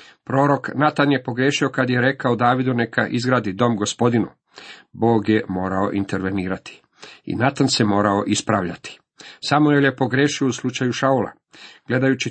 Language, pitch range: Croatian, 110-140 Hz